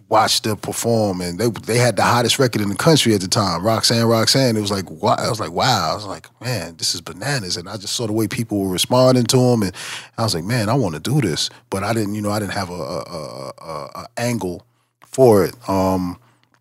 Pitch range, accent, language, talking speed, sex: 90-115 Hz, American, English, 250 wpm, male